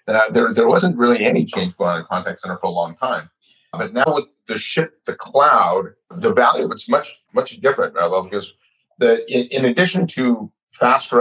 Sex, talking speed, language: male, 200 wpm, English